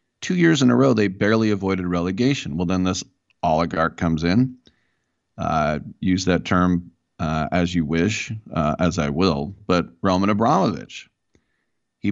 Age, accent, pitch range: 40-59, American, 90-110 Hz